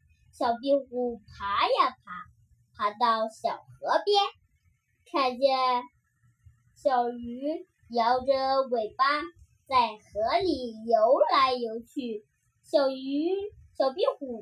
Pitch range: 215-320 Hz